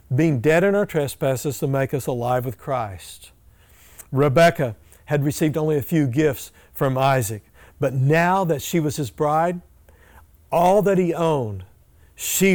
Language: English